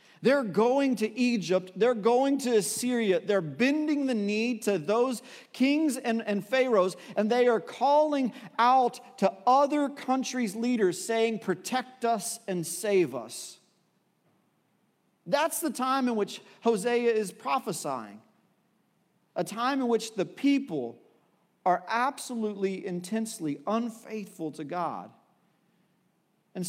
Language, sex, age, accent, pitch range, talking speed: English, male, 50-69, American, 175-235 Hz, 120 wpm